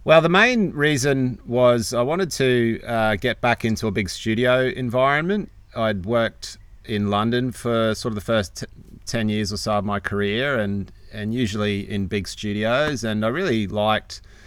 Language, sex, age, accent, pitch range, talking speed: English, male, 30-49, Australian, 100-120 Hz, 175 wpm